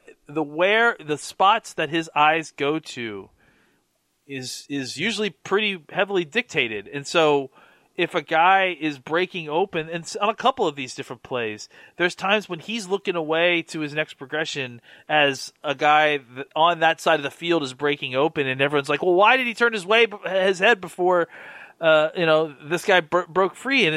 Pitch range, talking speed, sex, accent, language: 145-185 Hz, 190 wpm, male, American, English